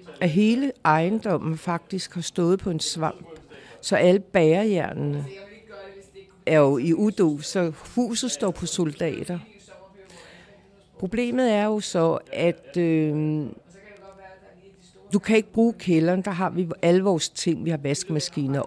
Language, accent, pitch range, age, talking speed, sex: English, Danish, 155-200 Hz, 60-79, 130 wpm, female